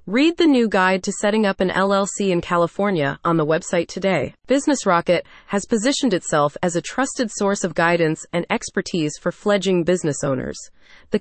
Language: English